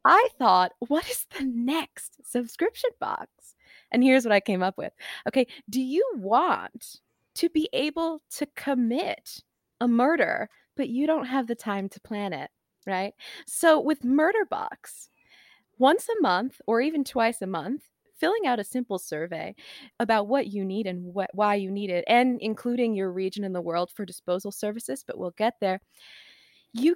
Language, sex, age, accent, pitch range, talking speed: English, female, 20-39, American, 205-295 Hz, 175 wpm